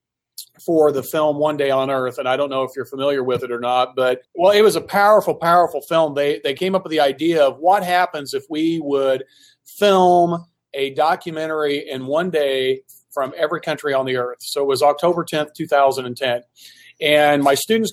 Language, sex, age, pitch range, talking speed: English, male, 40-59, 135-155 Hz, 200 wpm